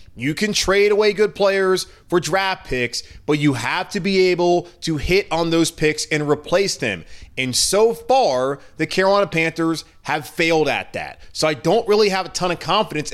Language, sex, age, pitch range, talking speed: English, male, 30-49, 135-185 Hz, 190 wpm